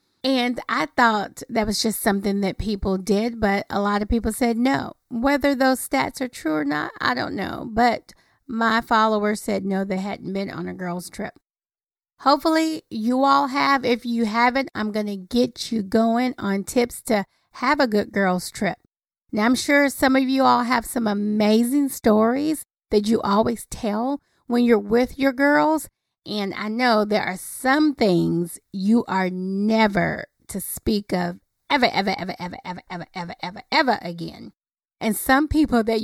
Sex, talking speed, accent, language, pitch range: female, 180 wpm, American, English, 205-265 Hz